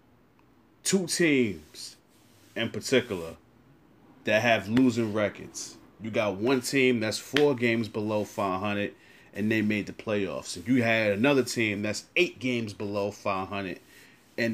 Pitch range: 105-125 Hz